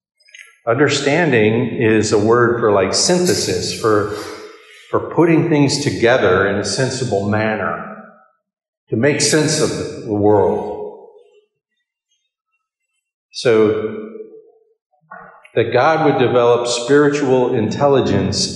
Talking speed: 95 wpm